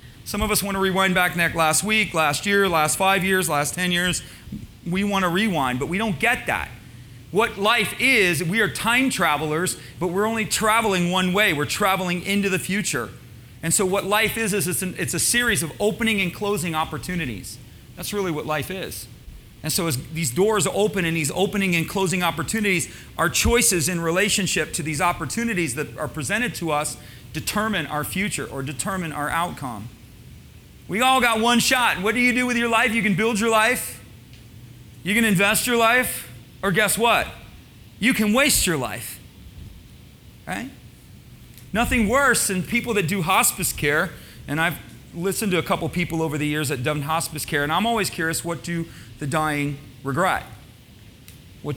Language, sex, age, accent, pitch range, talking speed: English, male, 40-59, American, 145-205 Hz, 185 wpm